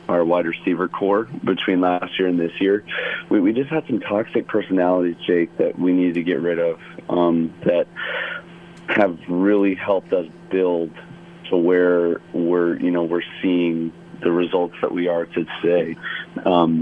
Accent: American